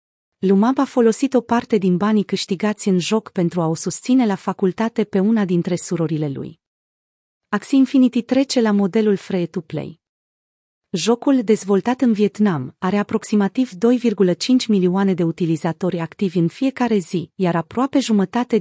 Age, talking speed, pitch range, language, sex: 30-49, 140 wpm, 175-230 Hz, Romanian, female